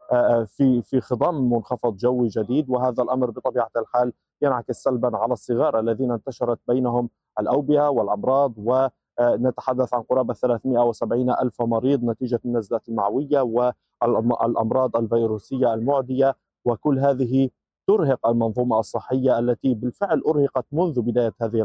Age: 20-39